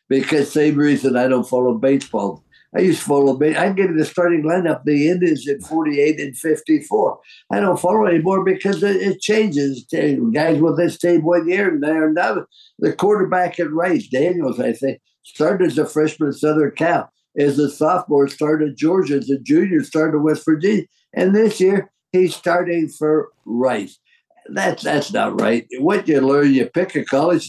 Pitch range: 140-175 Hz